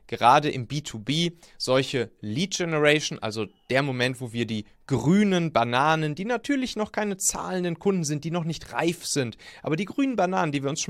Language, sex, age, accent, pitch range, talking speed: German, male, 30-49, German, 125-165 Hz, 185 wpm